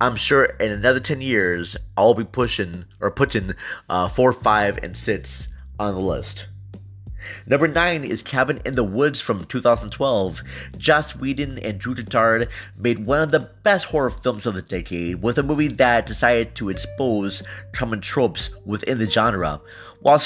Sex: male